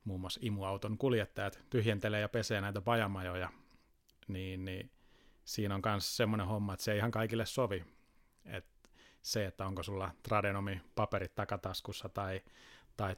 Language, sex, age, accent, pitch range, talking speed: Finnish, male, 30-49, native, 95-110 Hz, 140 wpm